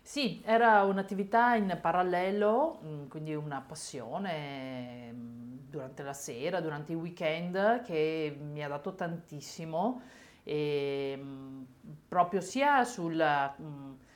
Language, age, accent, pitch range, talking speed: Italian, 40-59, native, 155-195 Hz, 95 wpm